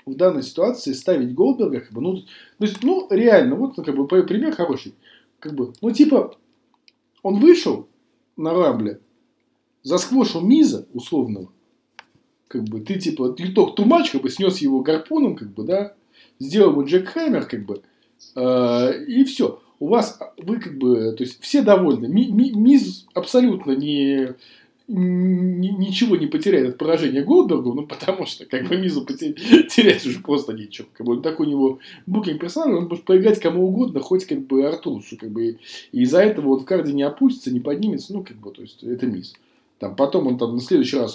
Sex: male